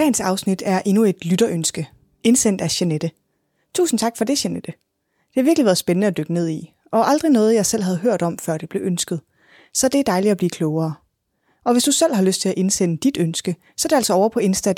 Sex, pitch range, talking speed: female, 170-230 Hz, 250 wpm